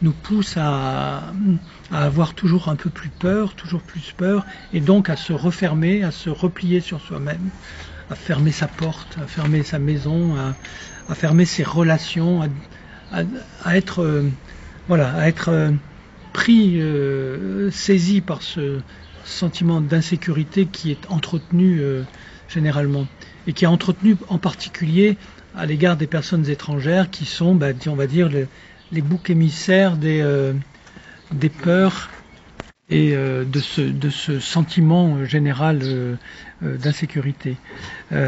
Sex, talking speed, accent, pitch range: male, 130 wpm, French, 145-180 Hz